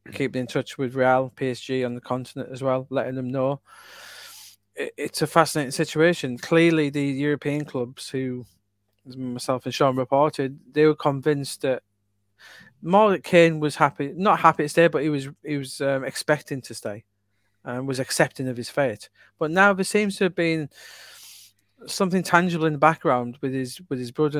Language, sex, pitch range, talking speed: English, male, 130-160 Hz, 175 wpm